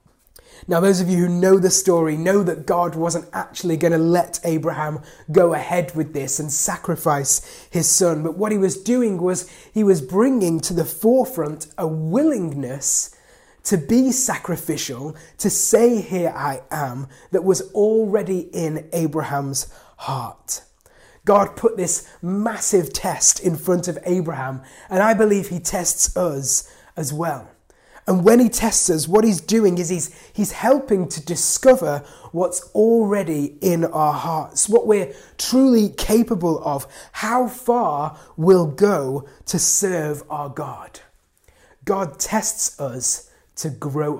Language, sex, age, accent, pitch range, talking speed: English, male, 20-39, British, 155-205 Hz, 145 wpm